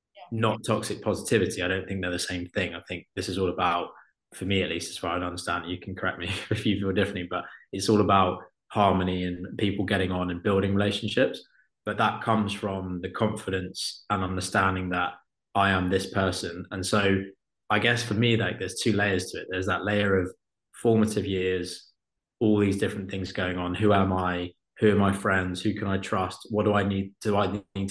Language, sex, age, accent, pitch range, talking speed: English, male, 20-39, British, 95-105 Hz, 215 wpm